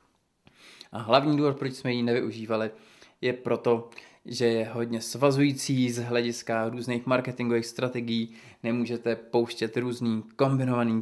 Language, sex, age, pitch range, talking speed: Czech, male, 20-39, 110-135 Hz, 120 wpm